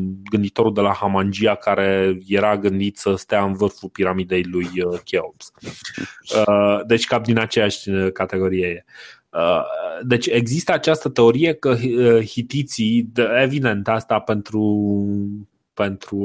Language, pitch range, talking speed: Romanian, 100-130 Hz, 105 wpm